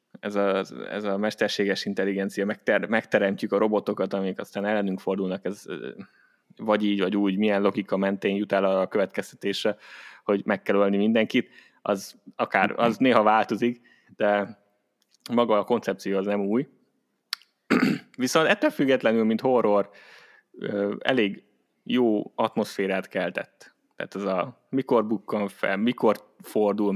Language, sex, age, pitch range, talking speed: Hungarian, male, 20-39, 95-105 Hz, 135 wpm